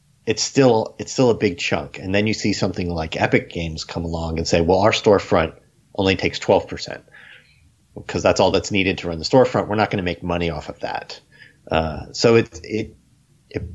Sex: male